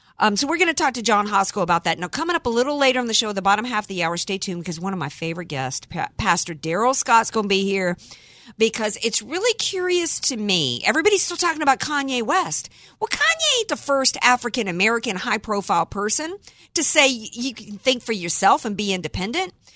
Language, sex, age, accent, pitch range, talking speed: English, female, 50-69, American, 170-245 Hz, 220 wpm